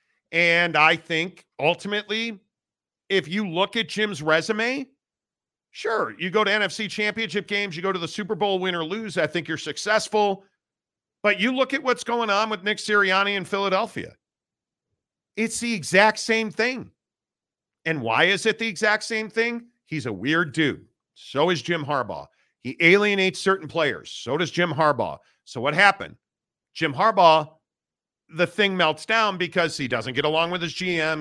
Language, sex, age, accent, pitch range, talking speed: English, male, 50-69, American, 160-210 Hz, 170 wpm